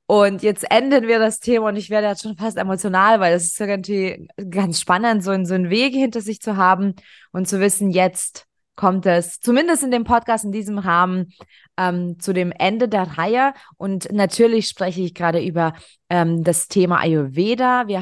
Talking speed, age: 190 wpm, 20-39